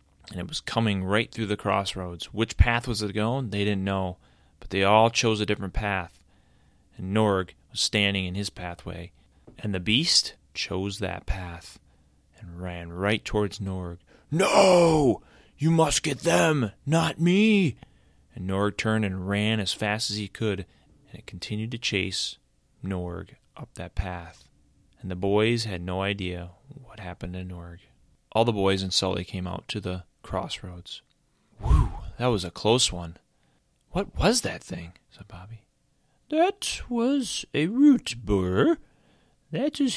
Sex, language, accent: male, English, American